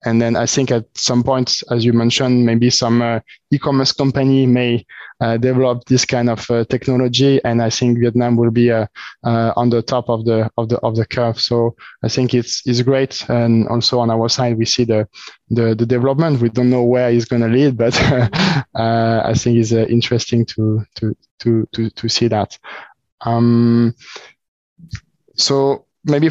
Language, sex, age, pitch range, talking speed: English, male, 20-39, 115-130 Hz, 190 wpm